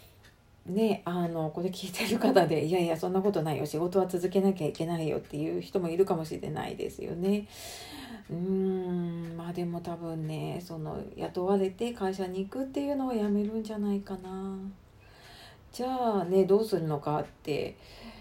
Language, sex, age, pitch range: Japanese, female, 40-59, 160-200 Hz